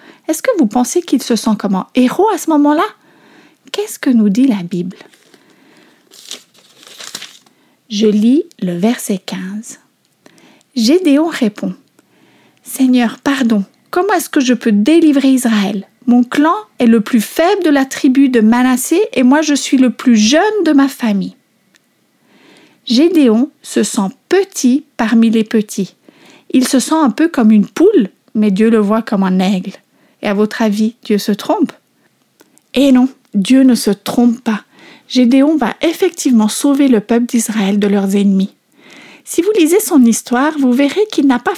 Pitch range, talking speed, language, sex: 220-300 Hz, 160 wpm, French, female